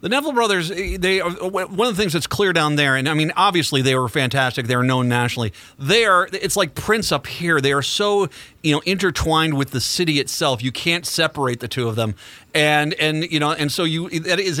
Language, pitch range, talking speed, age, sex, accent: English, 130-175 Hz, 235 wpm, 40-59, male, American